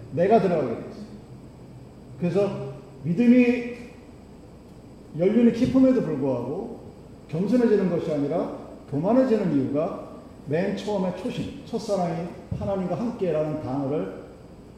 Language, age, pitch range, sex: Korean, 40-59, 145-210 Hz, male